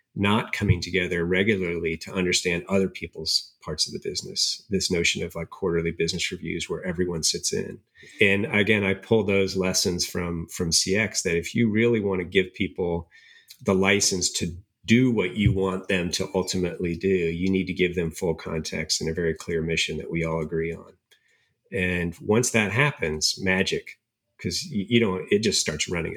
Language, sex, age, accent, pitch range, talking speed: English, male, 40-59, American, 85-110 Hz, 185 wpm